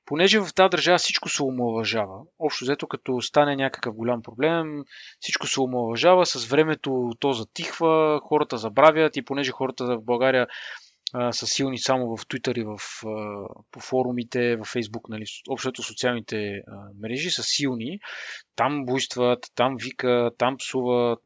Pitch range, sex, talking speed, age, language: 120-160 Hz, male, 145 wpm, 20-39, Bulgarian